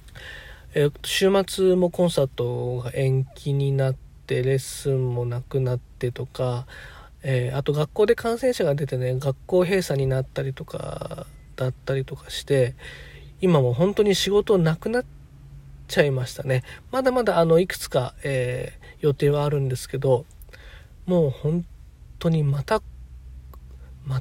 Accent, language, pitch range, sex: native, Japanese, 125-160 Hz, male